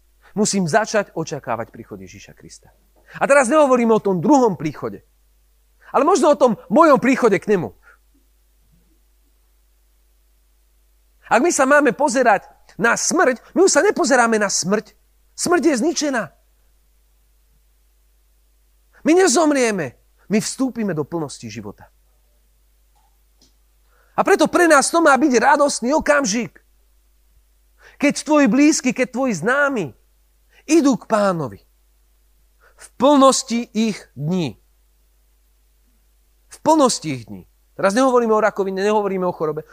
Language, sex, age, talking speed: Slovak, male, 40-59, 115 wpm